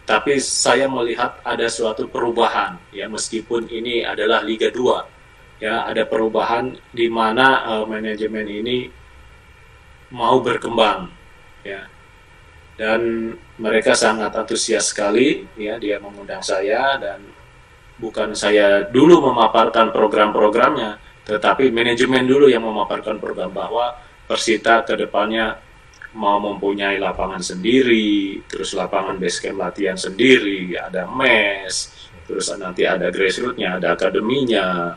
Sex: male